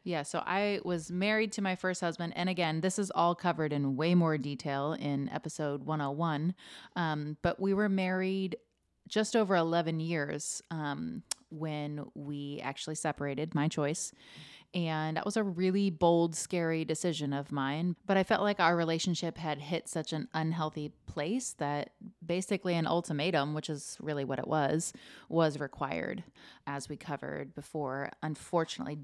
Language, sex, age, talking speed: English, female, 30-49, 160 wpm